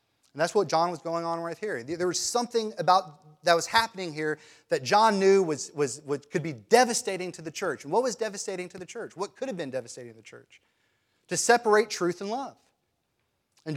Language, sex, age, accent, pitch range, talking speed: English, male, 30-49, American, 150-215 Hz, 220 wpm